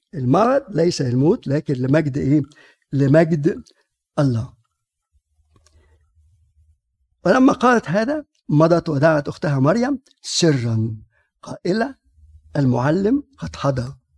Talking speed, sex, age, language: 85 wpm, male, 50-69, Arabic